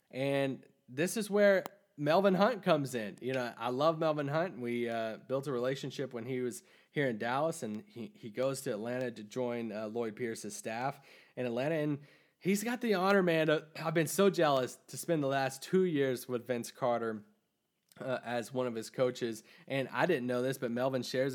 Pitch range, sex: 115-140 Hz, male